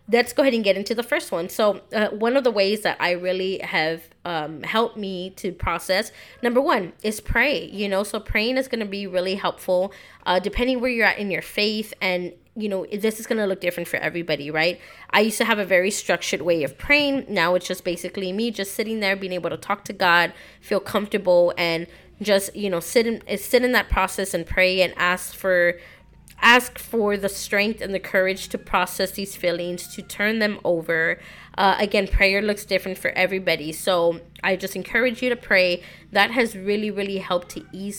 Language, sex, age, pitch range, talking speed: English, female, 20-39, 180-215 Hz, 215 wpm